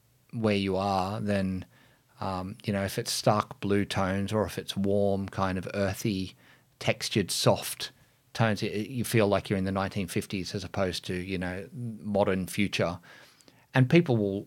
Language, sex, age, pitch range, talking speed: English, male, 40-59, 95-115 Hz, 165 wpm